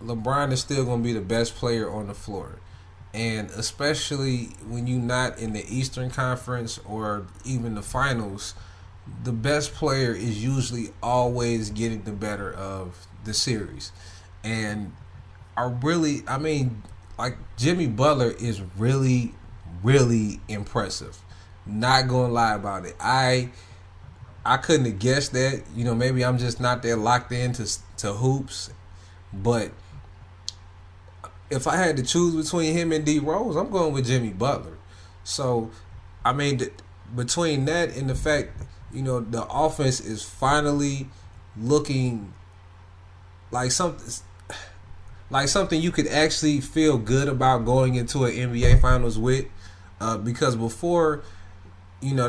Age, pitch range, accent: 20-39, 95-130 Hz, American